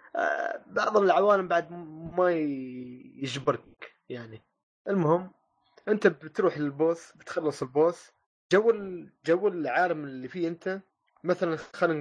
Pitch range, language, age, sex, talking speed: 130-170 Hz, Arabic, 20-39, male, 100 wpm